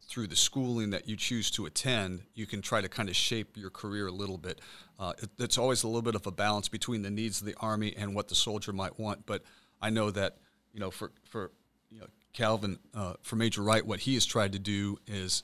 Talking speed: 250 wpm